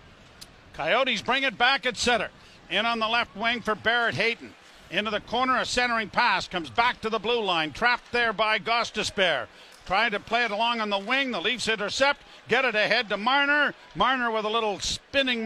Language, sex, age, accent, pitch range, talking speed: English, male, 50-69, American, 200-245 Hz, 200 wpm